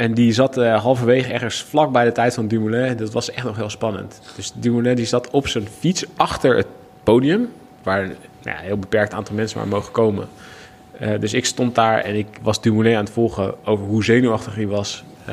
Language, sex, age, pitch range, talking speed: Dutch, male, 20-39, 105-125 Hz, 215 wpm